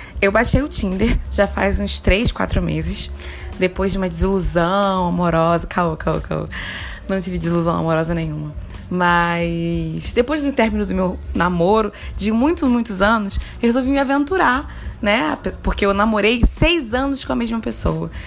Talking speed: 160 wpm